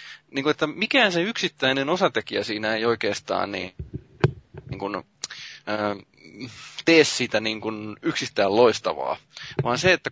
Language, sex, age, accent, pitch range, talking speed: Finnish, male, 20-39, native, 105-130 Hz, 130 wpm